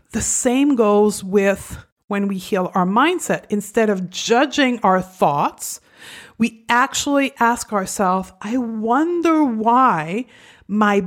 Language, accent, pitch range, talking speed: English, American, 200-255 Hz, 120 wpm